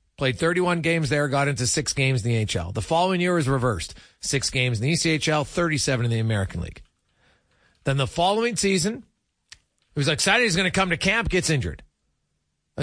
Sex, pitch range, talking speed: male, 125-180 Hz, 195 wpm